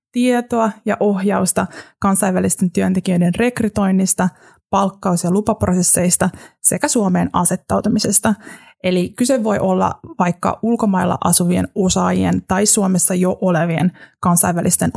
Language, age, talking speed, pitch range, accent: Finnish, 20-39, 100 wpm, 180-220 Hz, native